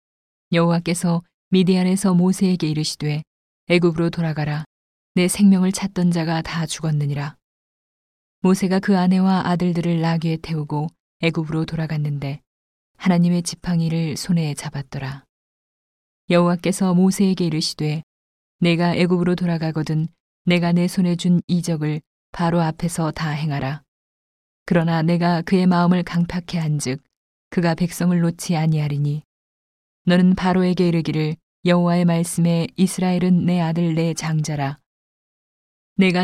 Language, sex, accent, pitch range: Korean, female, native, 155-180 Hz